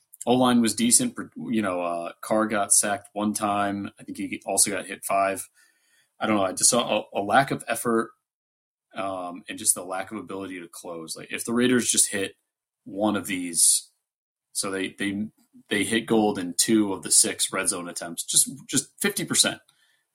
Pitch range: 95-120 Hz